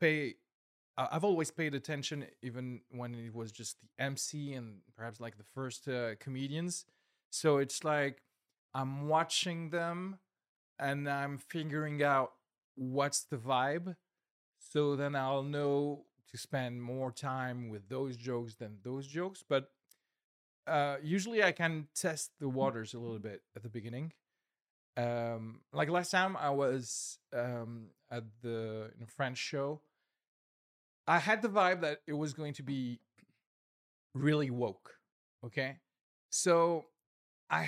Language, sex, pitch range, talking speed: French, male, 120-155 Hz, 135 wpm